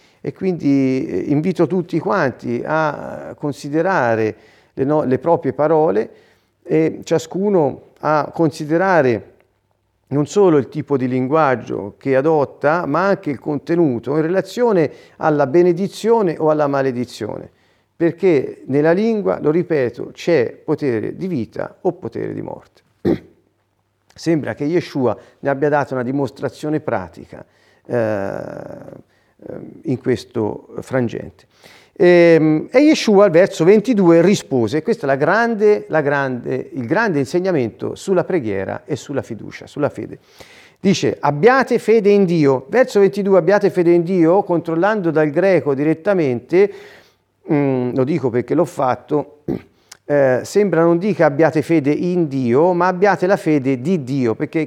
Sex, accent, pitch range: male, native, 140-190 Hz